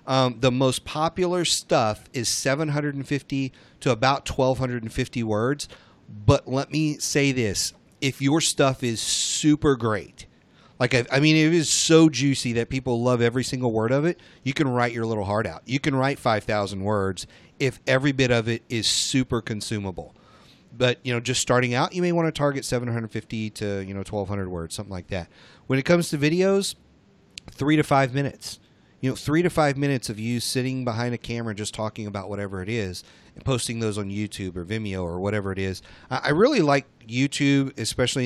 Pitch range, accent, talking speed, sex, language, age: 105-140 Hz, American, 190 wpm, male, English, 40-59